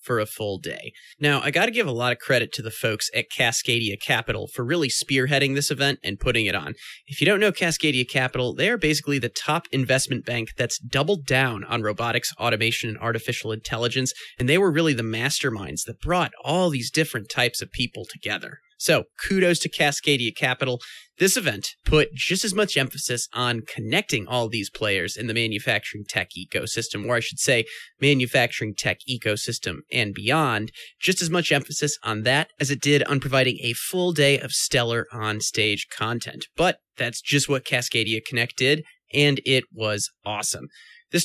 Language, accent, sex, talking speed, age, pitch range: English, American, male, 180 wpm, 30-49, 115-145 Hz